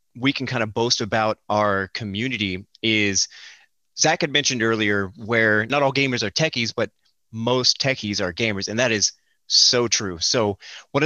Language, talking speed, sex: English, 170 wpm, male